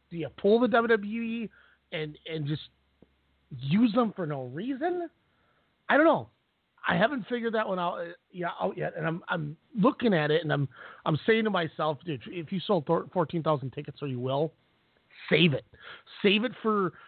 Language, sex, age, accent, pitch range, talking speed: English, male, 30-49, American, 145-205 Hz, 185 wpm